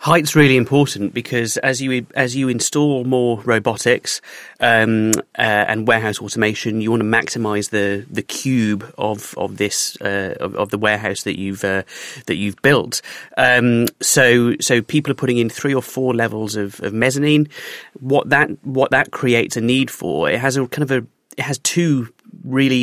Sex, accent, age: male, British, 30-49